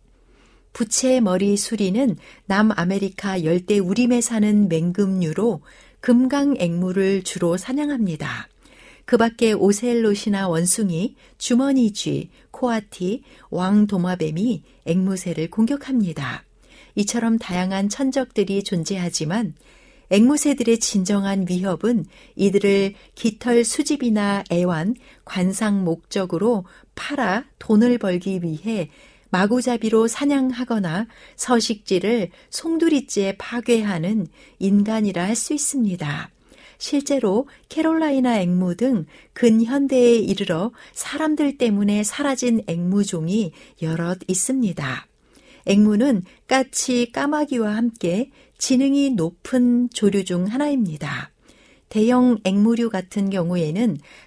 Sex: female